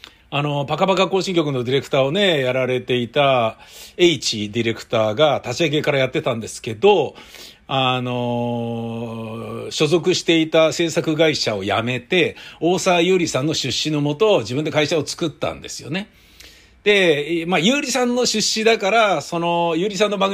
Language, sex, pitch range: Japanese, male, 130-195 Hz